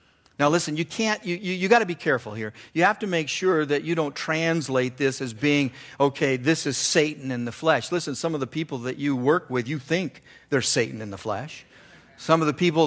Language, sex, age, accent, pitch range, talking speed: English, male, 50-69, American, 125-175 Hz, 240 wpm